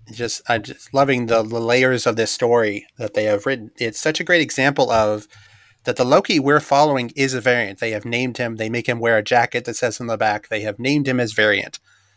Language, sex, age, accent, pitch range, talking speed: English, male, 30-49, American, 110-130 Hz, 240 wpm